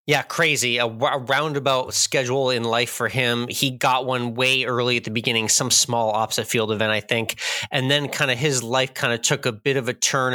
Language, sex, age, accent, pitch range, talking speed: English, male, 20-39, American, 120-140 Hz, 230 wpm